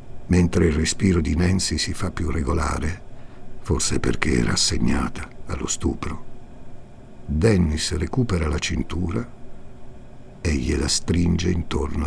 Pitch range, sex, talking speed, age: 80-115 Hz, male, 115 wpm, 60-79